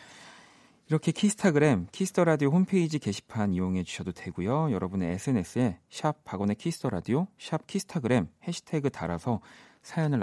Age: 40-59